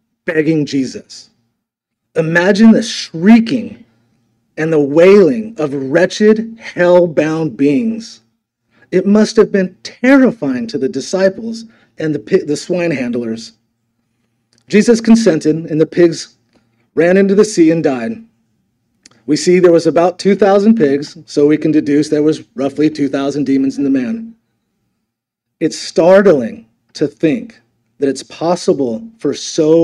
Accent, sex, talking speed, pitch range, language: American, male, 130 wpm, 120-190 Hz, English